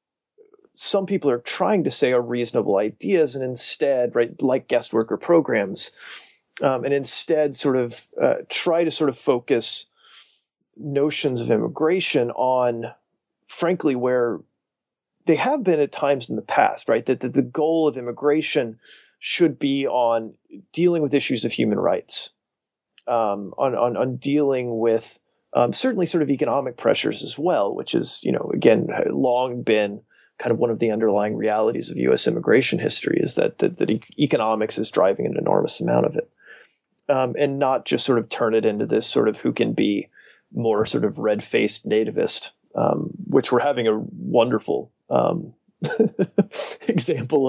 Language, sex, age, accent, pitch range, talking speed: English, male, 30-49, American, 120-155 Hz, 165 wpm